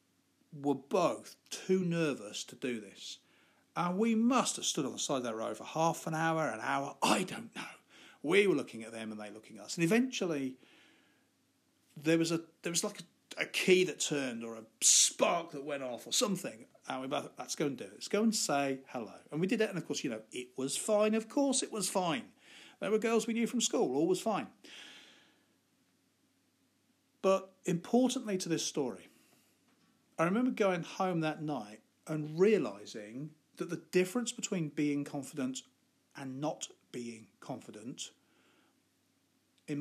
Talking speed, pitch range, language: 185 wpm, 140-220 Hz, English